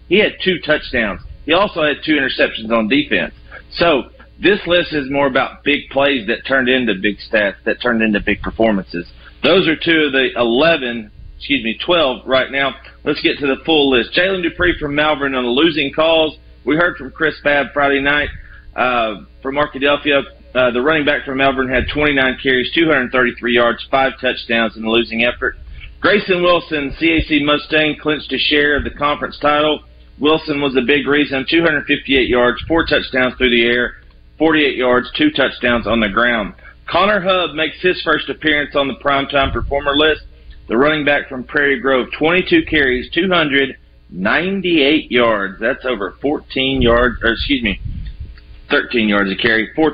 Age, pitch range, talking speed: 40-59, 120-155 Hz, 175 wpm